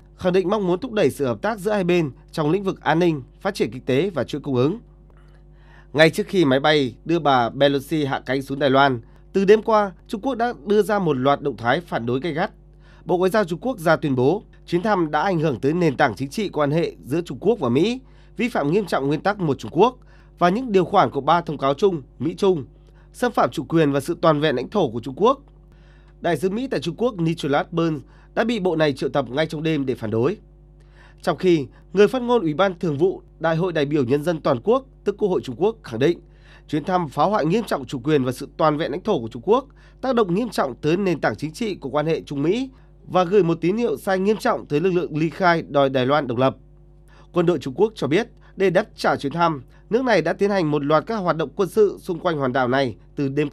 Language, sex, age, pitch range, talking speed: Vietnamese, male, 20-39, 145-185 Hz, 260 wpm